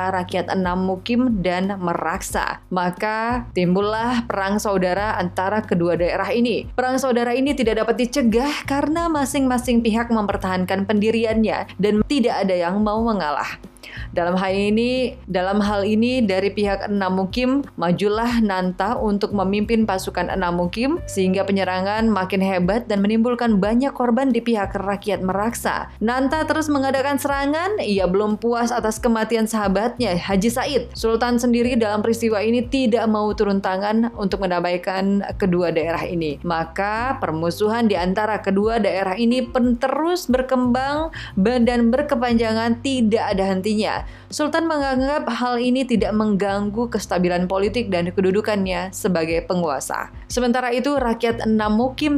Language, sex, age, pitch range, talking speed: Indonesian, female, 20-39, 190-245 Hz, 130 wpm